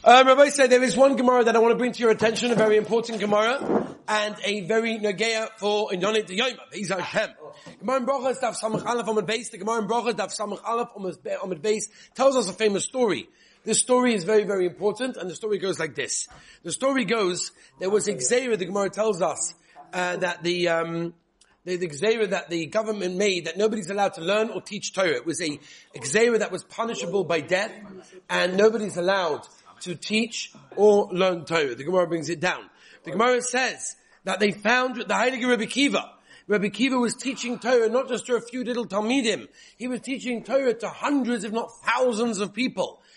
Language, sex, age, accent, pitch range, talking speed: English, male, 40-59, British, 190-240 Hz, 195 wpm